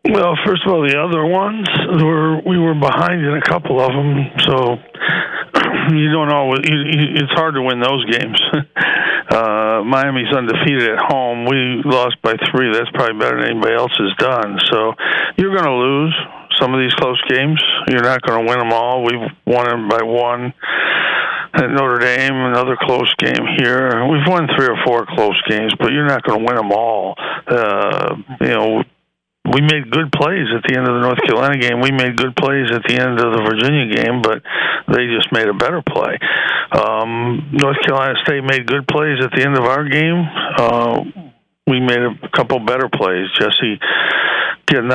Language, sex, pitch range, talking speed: English, male, 120-150 Hz, 190 wpm